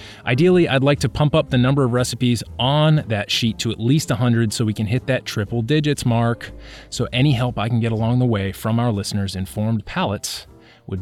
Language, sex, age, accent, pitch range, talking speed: English, male, 30-49, American, 110-140 Hz, 220 wpm